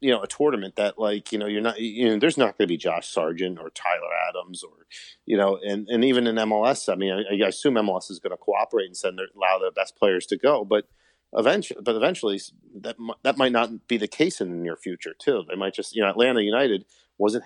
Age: 40-59